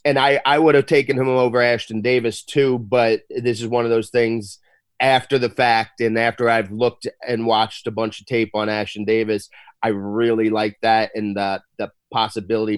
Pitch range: 110-120 Hz